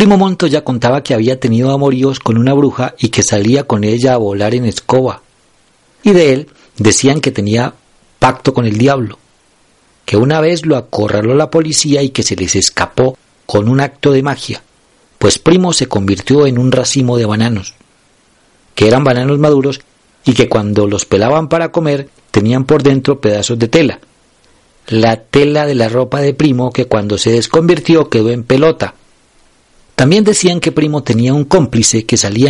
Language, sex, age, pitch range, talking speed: Spanish, male, 40-59, 115-150 Hz, 175 wpm